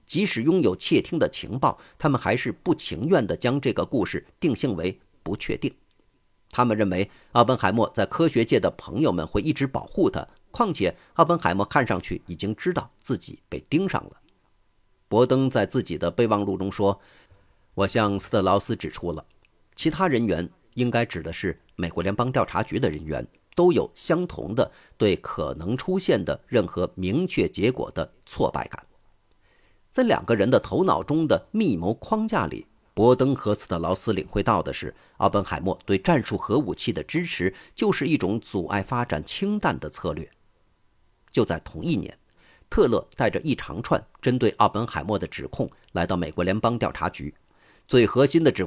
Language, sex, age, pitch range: Chinese, male, 50-69, 95-130 Hz